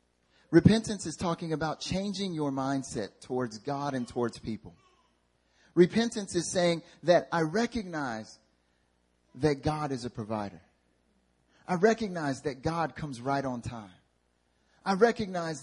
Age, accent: 30-49, American